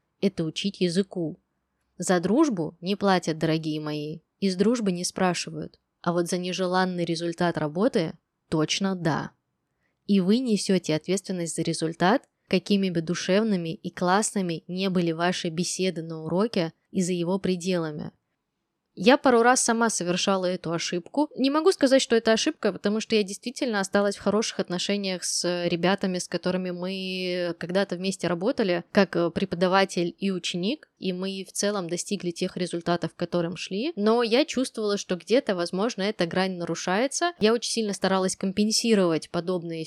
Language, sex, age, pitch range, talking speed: Russian, female, 20-39, 175-210 Hz, 150 wpm